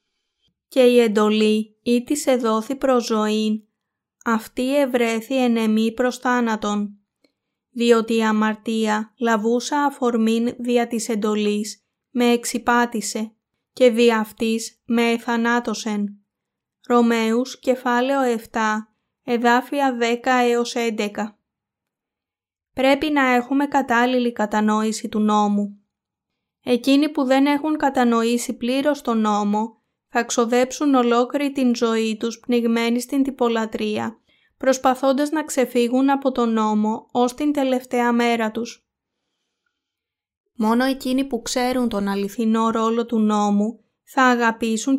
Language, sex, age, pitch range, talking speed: Greek, female, 20-39, 220-255 Hz, 115 wpm